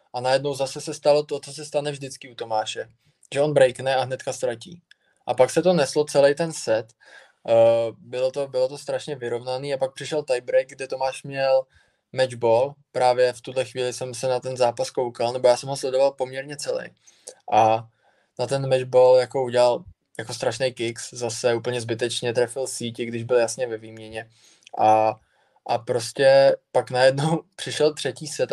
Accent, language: native, Czech